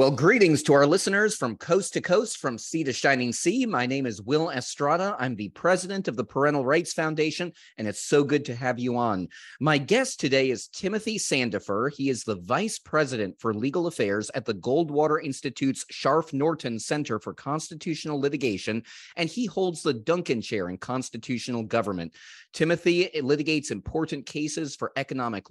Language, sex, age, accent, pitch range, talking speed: English, male, 30-49, American, 120-155 Hz, 170 wpm